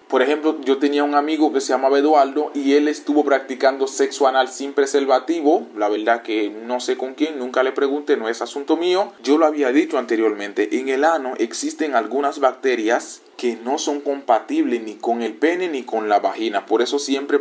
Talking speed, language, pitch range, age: 200 wpm, Spanish, 130-165 Hz, 20-39